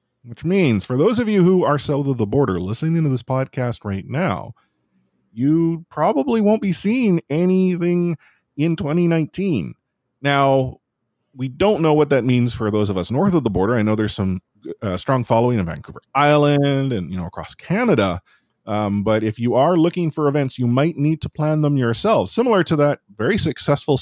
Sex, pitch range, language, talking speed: male, 110-165 Hz, English, 190 wpm